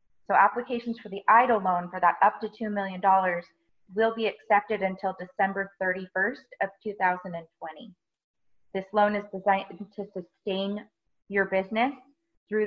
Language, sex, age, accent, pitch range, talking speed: English, female, 20-39, American, 185-215 Hz, 135 wpm